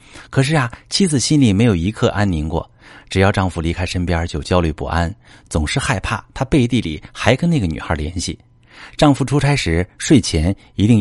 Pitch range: 90-125 Hz